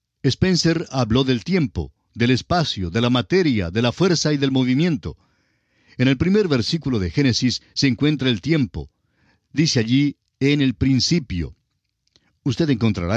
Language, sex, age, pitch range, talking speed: French, male, 50-69, 105-140 Hz, 145 wpm